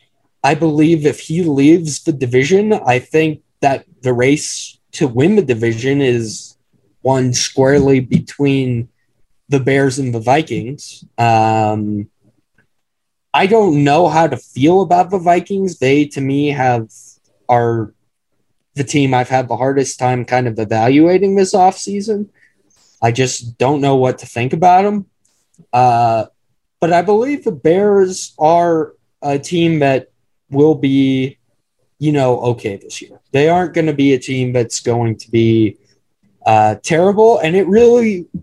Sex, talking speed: male, 145 wpm